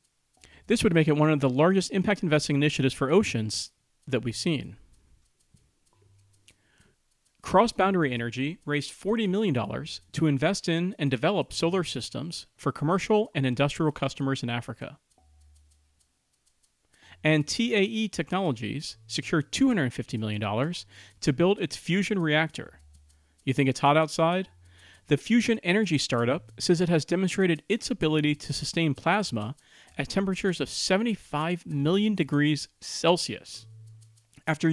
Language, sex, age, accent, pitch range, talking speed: English, male, 40-59, American, 125-180 Hz, 125 wpm